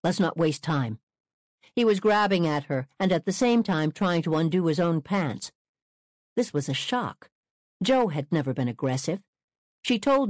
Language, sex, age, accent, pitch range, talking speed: English, female, 60-79, American, 145-220 Hz, 180 wpm